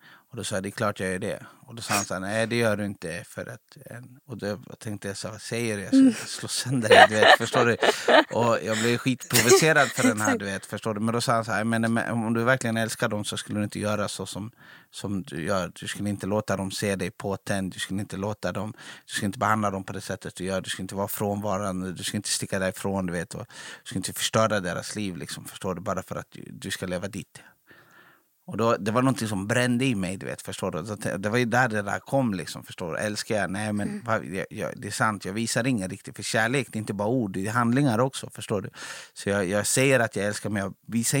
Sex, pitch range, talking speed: male, 100-115 Hz, 260 wpm